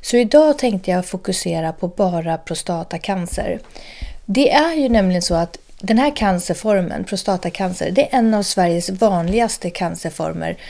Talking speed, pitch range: 140 wpm, 175-235 Hz